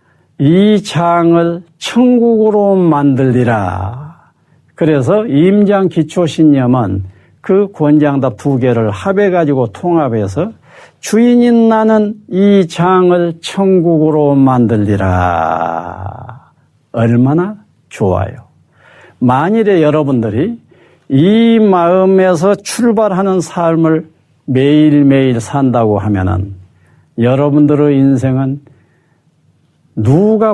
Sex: male